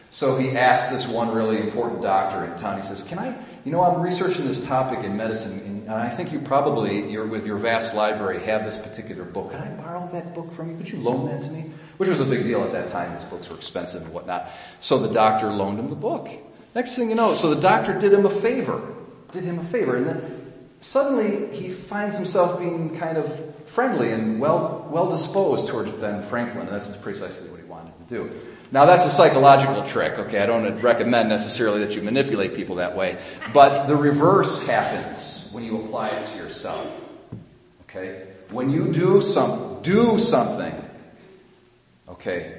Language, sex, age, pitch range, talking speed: English, male, 40-59, 110-170 Hz, 200 wpm